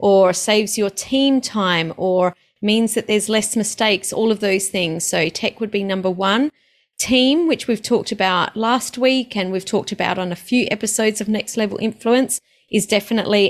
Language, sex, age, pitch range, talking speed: English, female, 30-49, 190-230 Hz, 185 wpm